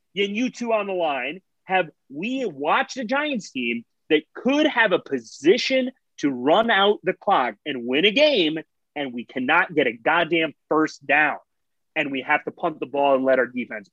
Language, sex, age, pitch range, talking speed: English, male, 30-49, 145-215 Hz, 195 wpm